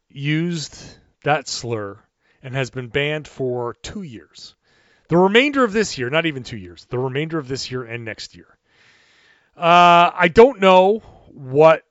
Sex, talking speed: male, 160 wpm